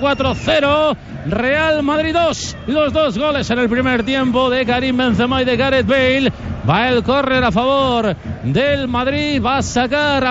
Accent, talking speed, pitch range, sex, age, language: Spanish, 170 wpm, 235-265 Hz, male, 40-59, Spanish